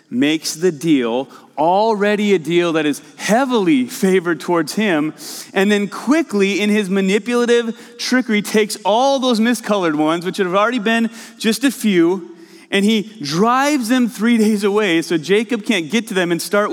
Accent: American